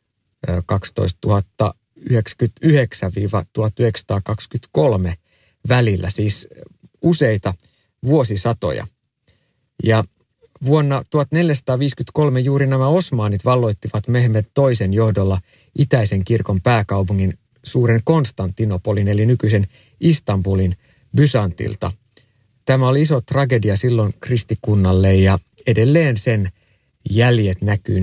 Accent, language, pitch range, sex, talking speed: native, Finnish, 100-130 Hz, male, 75 wpm